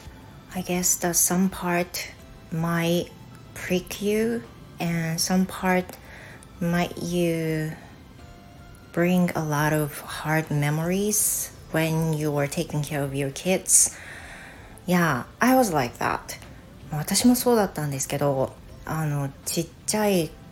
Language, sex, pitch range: Japanese, female, 140-175 Hz